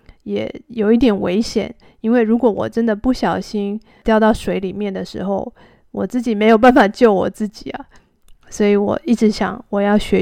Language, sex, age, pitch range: Chinese, female, 20-39, 200-225 Hz